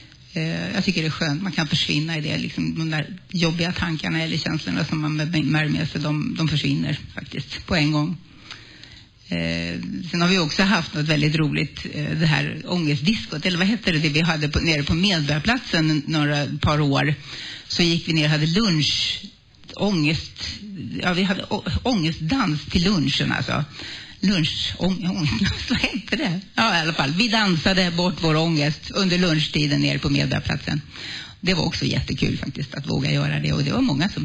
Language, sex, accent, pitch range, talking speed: Swedish, female, native, 145-180 Hz, 180 wpm